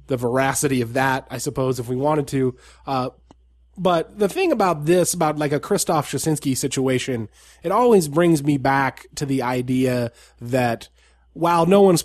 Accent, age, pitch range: American, 20-39, 130-160 Hz